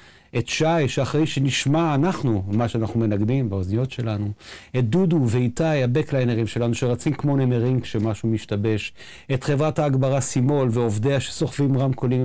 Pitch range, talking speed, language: 110-135 Hz, 130 wpm, Hebrew